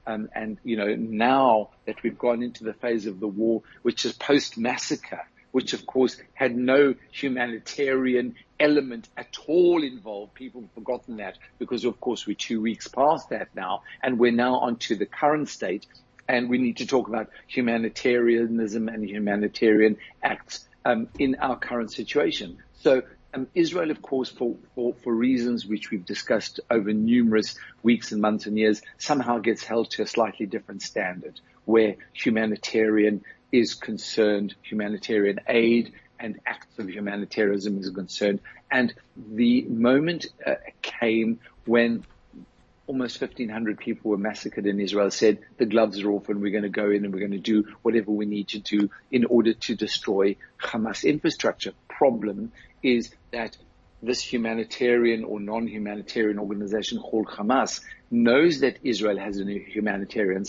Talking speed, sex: 155 wpm, male